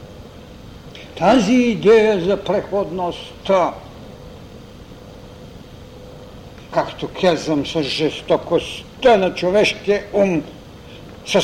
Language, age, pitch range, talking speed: Bulgarian, 60-79, 165-215 Hz, 65 wpm